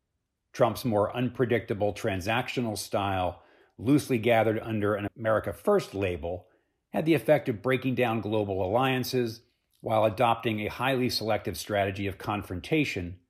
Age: 50-69